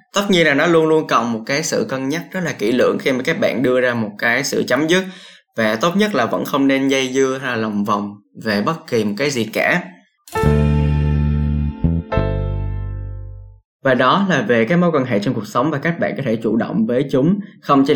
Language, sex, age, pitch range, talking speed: Vietnamese, male, 10-29, 110-165 Hz, 230 wpm